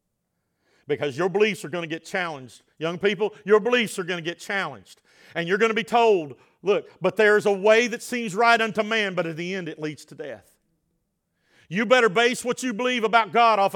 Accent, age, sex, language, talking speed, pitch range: American, 40-59, male, English, 220 wpm, 200-255 Hz